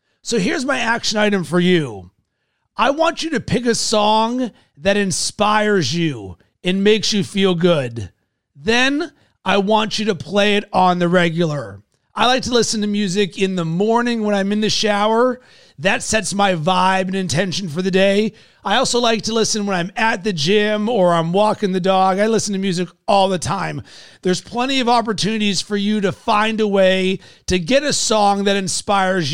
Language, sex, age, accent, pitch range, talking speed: English, male, 40-59, American, 185-220 Hz, 190 wpm